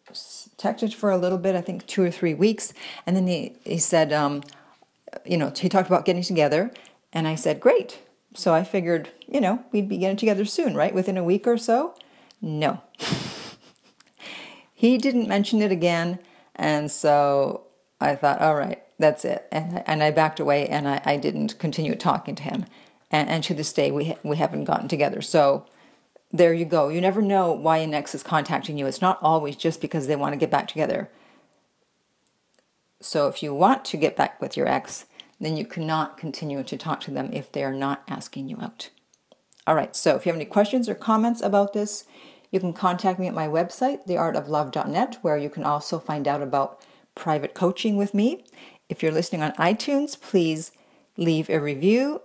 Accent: American